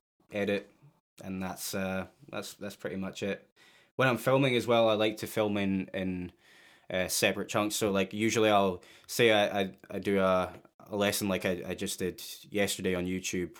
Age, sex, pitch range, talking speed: 10-29, male, 95-105 Hz, 190 wpm